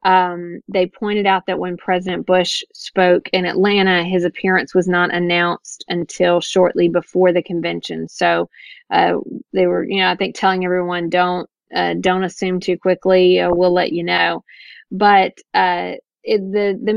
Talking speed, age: 165 wpm, 30-49